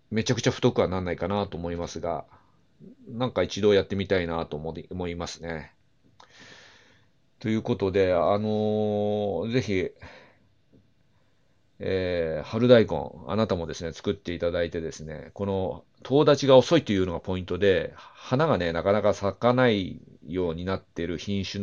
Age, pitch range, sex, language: 40-59, 85-110 Hz, male, Japanese